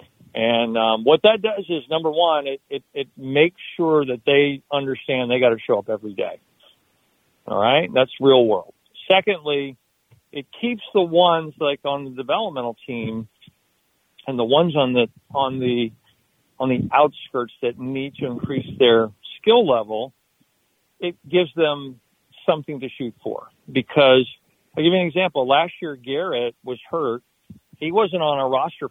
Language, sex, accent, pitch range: English, male, American, 130-175 Hz